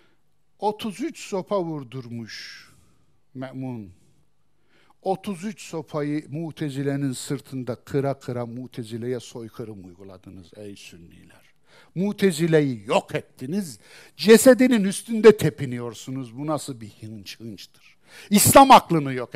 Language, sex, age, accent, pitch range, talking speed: Turkish, male, 60-79, native, 115-185 Hz, 90 wpm